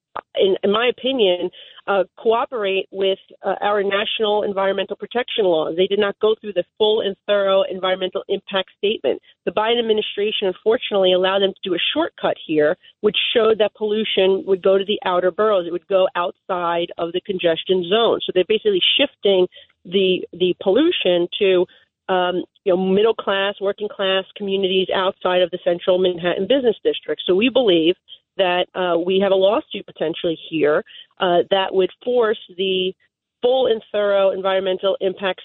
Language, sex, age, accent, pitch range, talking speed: English, female, 40-59, American, 185-225 Hz, 165 wpm